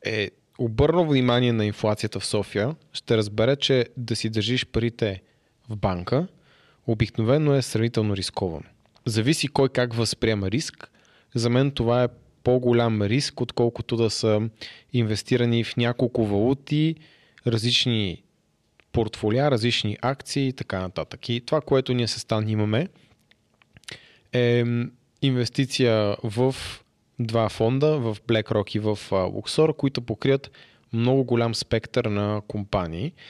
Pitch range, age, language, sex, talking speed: 110-130 Hz, 20-39, Bulgarian, male, 125 wpm